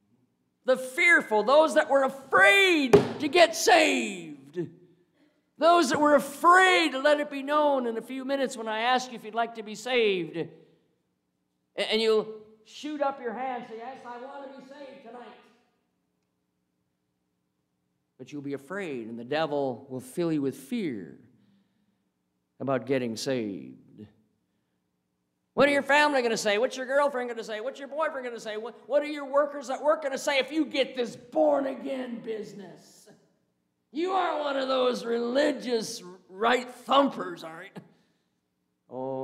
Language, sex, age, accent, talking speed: English, male, 50-69, American, 165 wpm